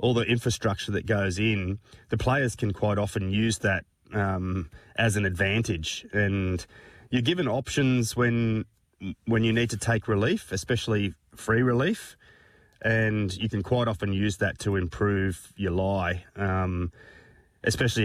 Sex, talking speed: male, 145 wpm